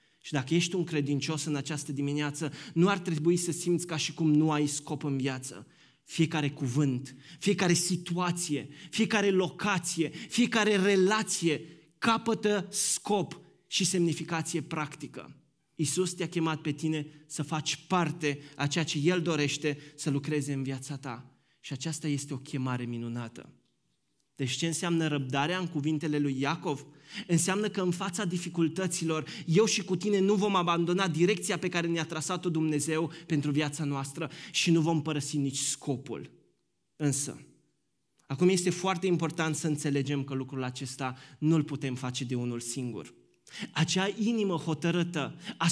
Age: 20-39